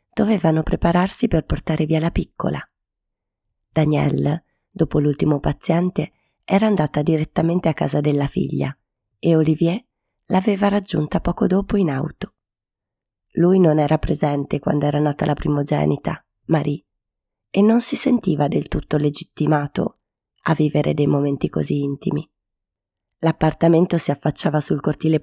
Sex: female